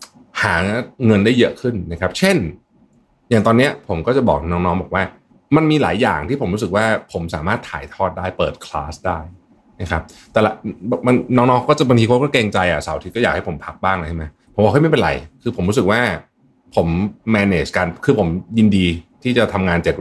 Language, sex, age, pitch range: Thai, male, 30-49, 85-115 Hz